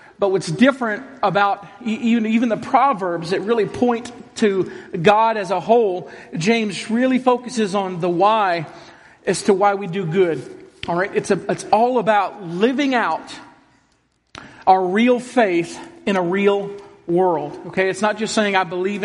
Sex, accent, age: male, American, 40-59